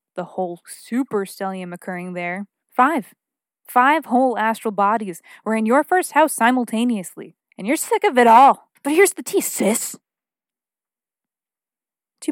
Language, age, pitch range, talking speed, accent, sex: English, 20-39, 195-255 Hz, 140 wpm, American, female